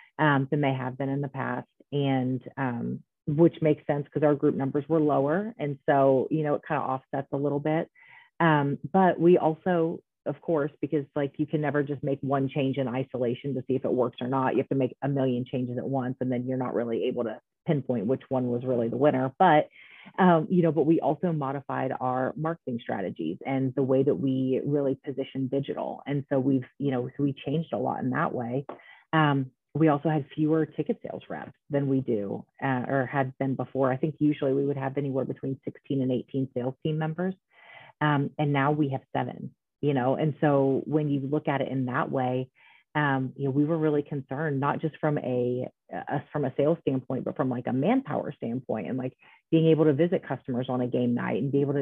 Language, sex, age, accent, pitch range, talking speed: English, female, 30-49, American, 130-150 Hz, 220 wpm